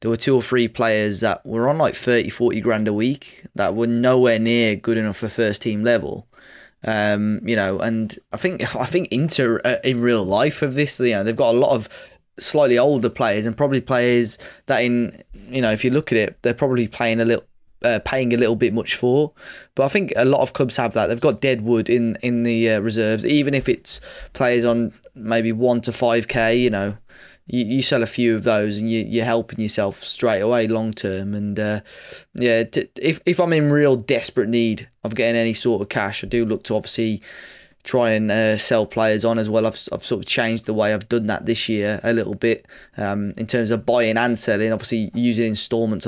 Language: English